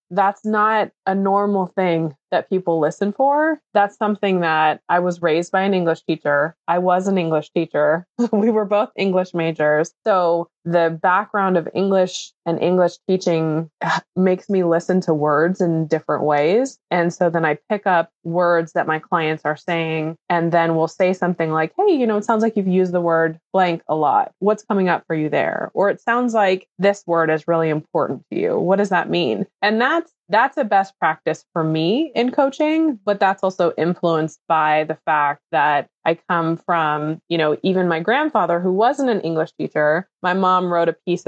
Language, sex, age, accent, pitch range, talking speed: English, female, 20-39, American, 160-195 Hz, 195 wpm